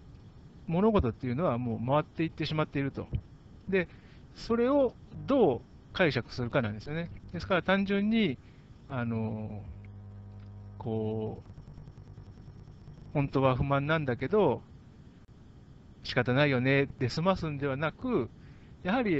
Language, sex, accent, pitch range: Japanese, male, native, 115-175 Hz